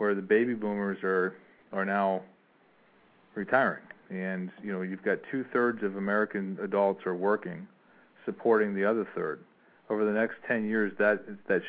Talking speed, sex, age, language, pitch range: 155 wpm, male, 40-59, English, 95-115 Hz